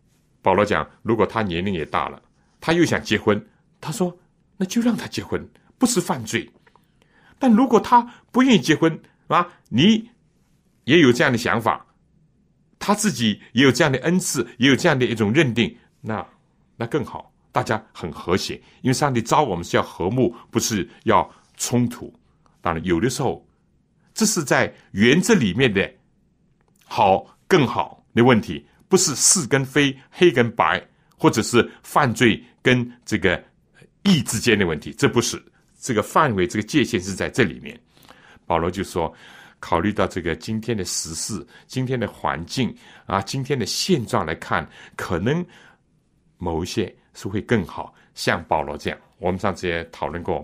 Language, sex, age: Chinese, male, 60-79